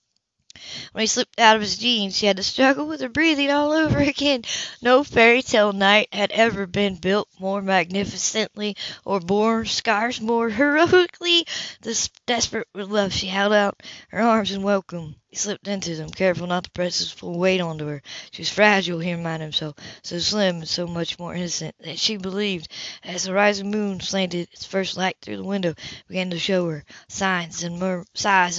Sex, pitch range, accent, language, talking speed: female, 175-205 Hz, American, English, 190 wpm